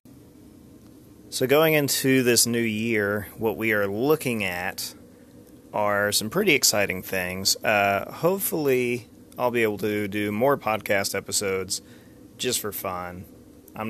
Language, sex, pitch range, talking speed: English, male, 95-120 Hz, 130 wpm